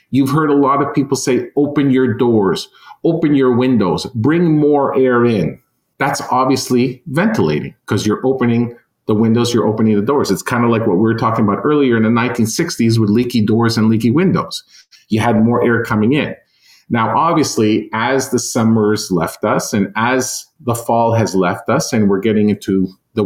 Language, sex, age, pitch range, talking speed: English, male, 40-59, 105-130 Hz, 190 wpm